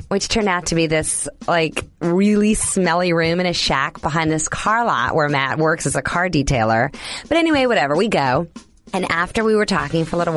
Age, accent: 30-49, American